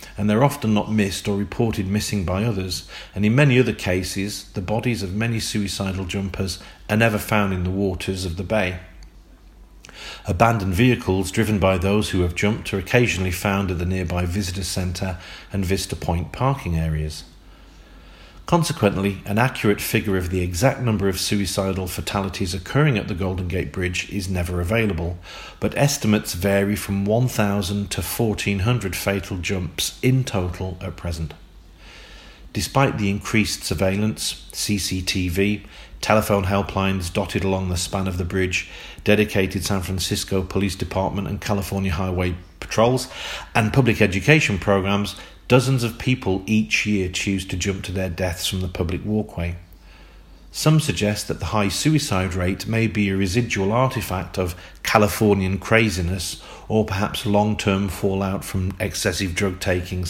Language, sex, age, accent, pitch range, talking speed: English, male, 40-59, British, 90-105 Hz, 150 wpm